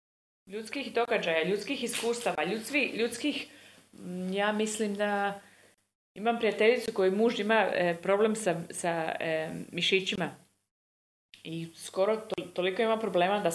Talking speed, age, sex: 125 wpm, 30-49, female